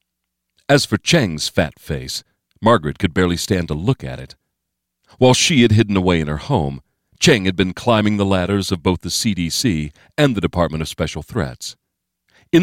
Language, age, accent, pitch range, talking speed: English, 40-59, American, 80-105 Hz, 180 wpm